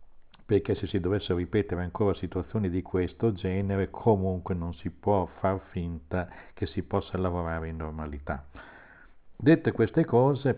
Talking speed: 140 wpm